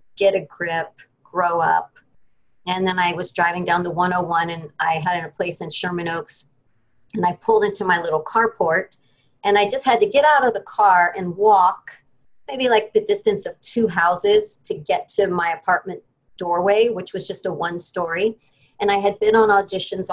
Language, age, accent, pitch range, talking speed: English, 40-59, American, 170-220 Hz, 195 wpm